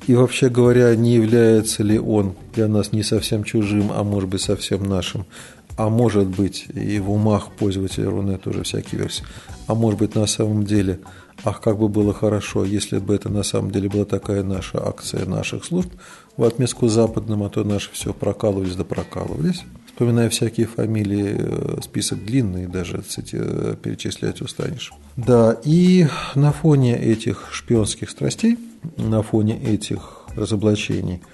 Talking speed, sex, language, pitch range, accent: 155 wpm, male, Russian, 100-120 Hz, native